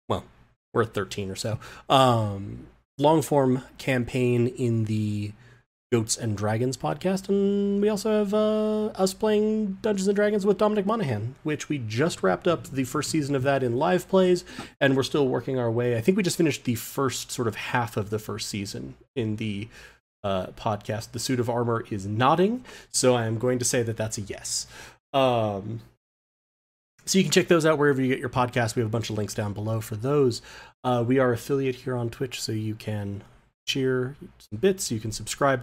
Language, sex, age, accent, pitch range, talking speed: English, male, 30-49, American, 110-145 Hz, 200 wpm